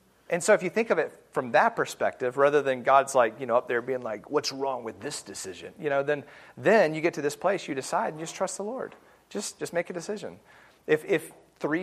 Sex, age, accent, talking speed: male, 30-49, American, 255 wpm